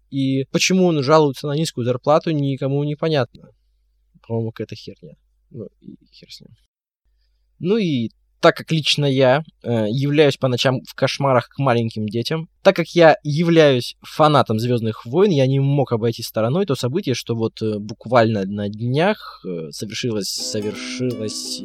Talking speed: 150 wpm